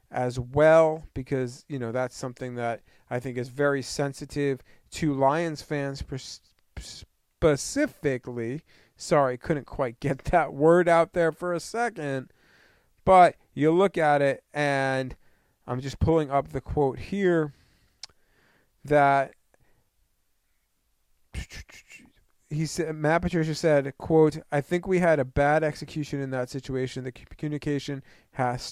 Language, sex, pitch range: English, male, 130-155 Hz